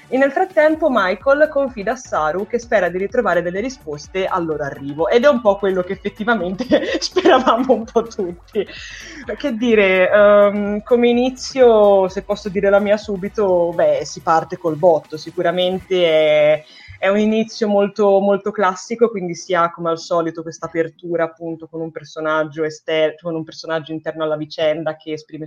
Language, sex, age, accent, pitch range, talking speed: Italian, female, 20-39, native, 165-205 Hz, 170 wpm